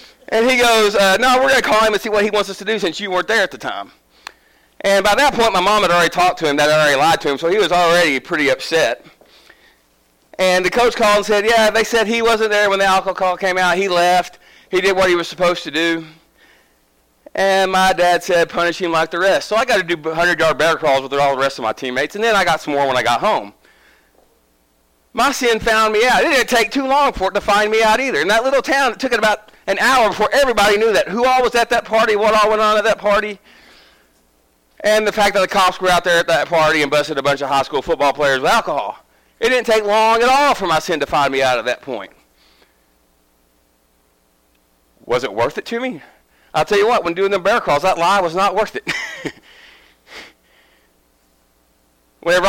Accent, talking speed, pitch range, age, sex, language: American, 245 wpm, 140-215 Hz, 30-49, male, English